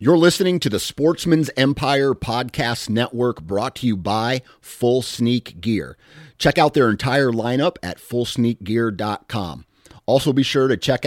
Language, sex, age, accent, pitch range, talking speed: English, male, 30-49, American, 100-125 Hz, 145 wpm